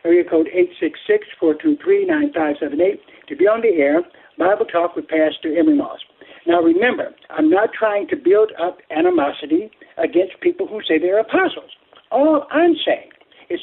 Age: 60-79